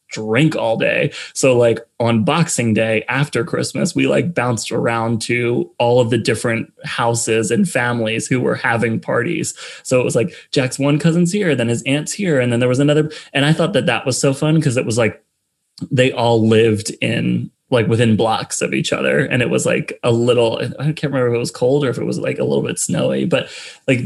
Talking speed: 220 wpm